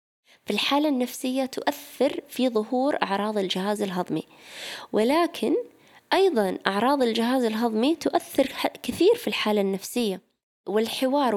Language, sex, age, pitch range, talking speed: Arabic, female, 20-39, 200-255 Hz, 105 wpm